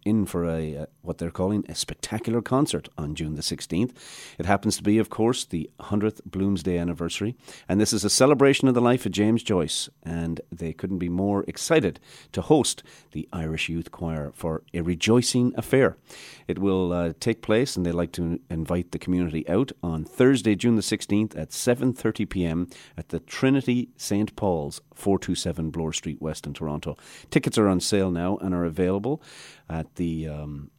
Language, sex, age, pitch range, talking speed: English, male, 40-59, 85-110 Hz, 180 wpm